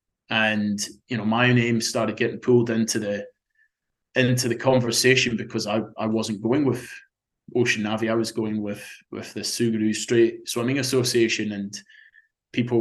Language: English